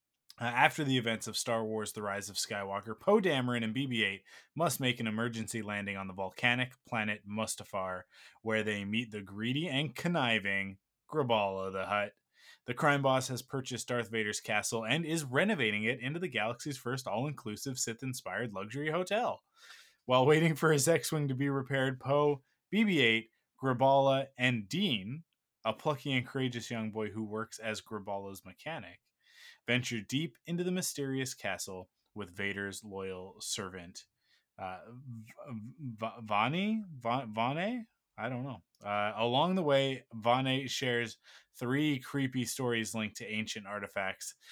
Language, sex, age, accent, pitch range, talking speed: English, male, 20-39, American, 105-135 Hz, 150 wpm